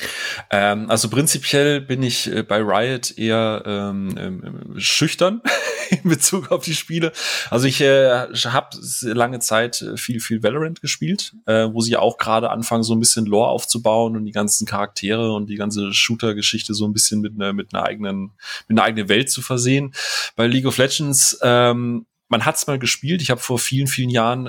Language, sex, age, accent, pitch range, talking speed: German, male, 30-49, German, 110-135 Hz, 180 wpm